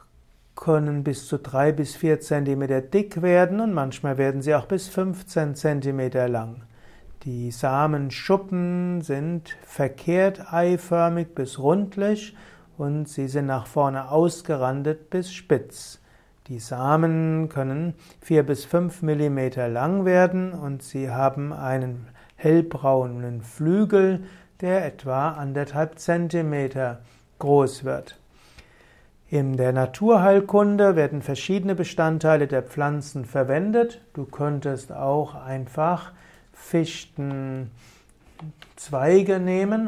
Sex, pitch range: male, 135-175 Hz